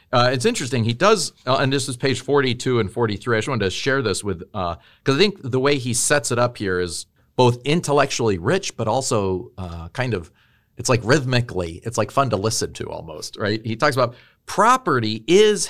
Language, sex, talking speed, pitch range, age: English, male, 215 wpm, 110-150 Hz, 40-59